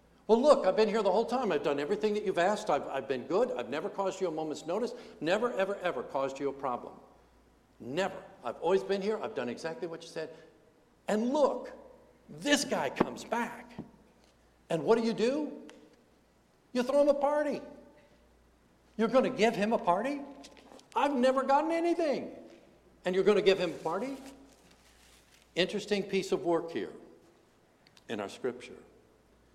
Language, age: English, 60-79